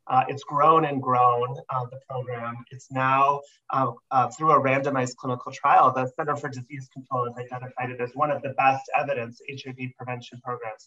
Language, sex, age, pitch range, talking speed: English, male, 30-49, 125-145 Hz, 190 wpm